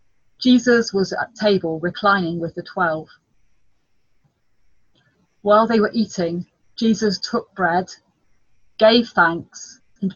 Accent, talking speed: British, 105 wpm